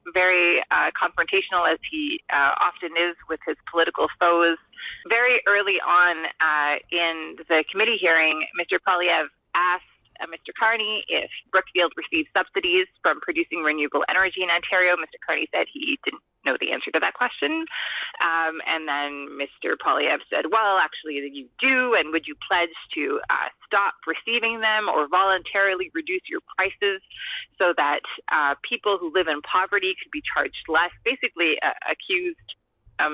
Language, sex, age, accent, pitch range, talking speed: English, female, 30-49, American, 170-280 Hz, 160 wpm